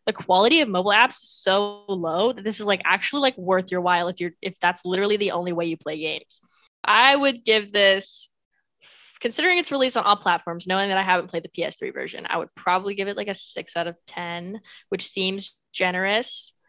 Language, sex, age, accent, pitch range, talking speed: English, female, 10-29, American, 180-215 Hz, 215 wpm